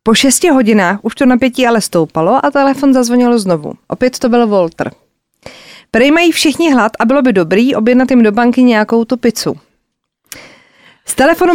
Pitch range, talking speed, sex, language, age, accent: 200-255 Hz, 165 wpm, female, Czech, 30-49, native